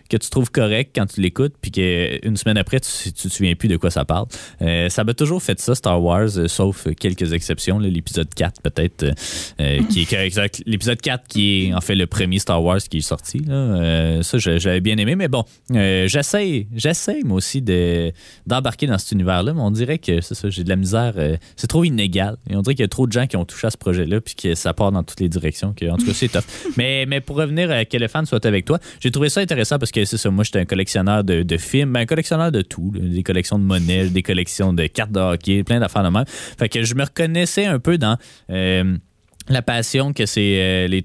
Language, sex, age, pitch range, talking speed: French, male, 20-39, 95-125 Hz, 255 wpm